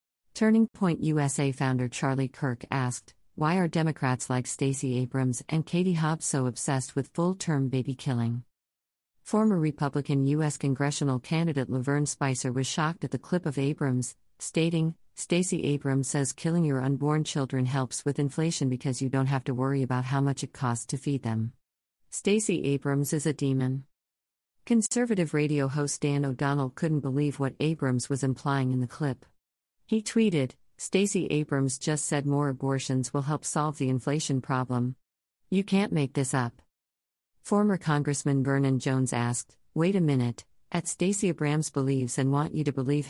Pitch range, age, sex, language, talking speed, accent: 130-150 Hz, 50-69, female, English, 160 wpm, American